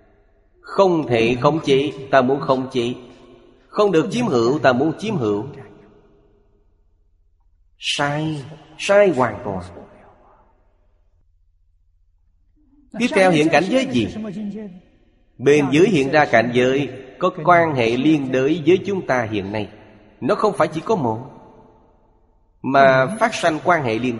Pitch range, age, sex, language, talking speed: 105-155 Hz, 30-49, male, Vietnamese, 135 wpm